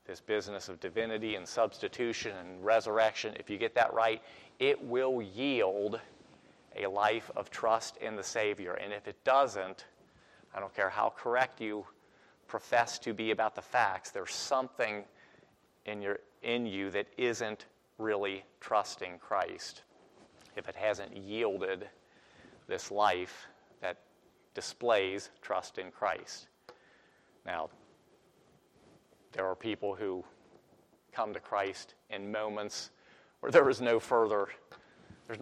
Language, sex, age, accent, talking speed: English, male, 40-59, American, 130 wpm